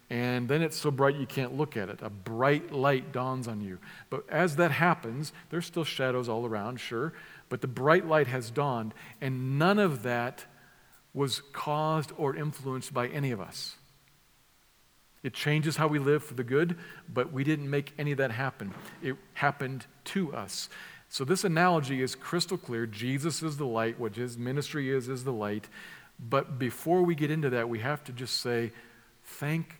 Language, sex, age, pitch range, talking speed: English, male, 50-69, 120-150 Hz, 185 wpm